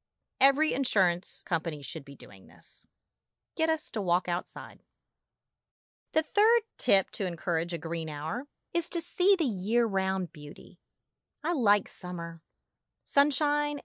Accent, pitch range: American, 170-280 Hz